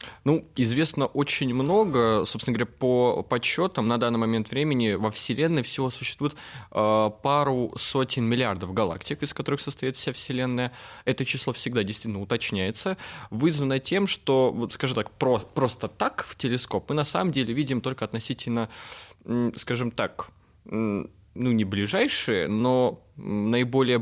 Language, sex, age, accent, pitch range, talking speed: Russian, male, 20-39, native, 115-145 Hz, 135 wpm